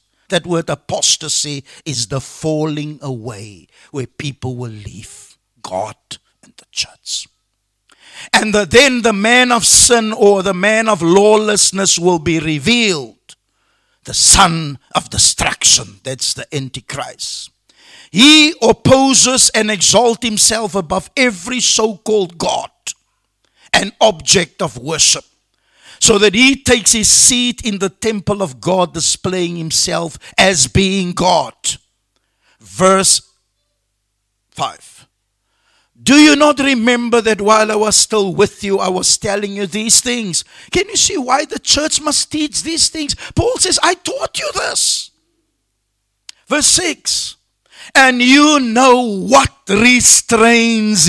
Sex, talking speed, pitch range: male, 125 wpm, 155-240 Hz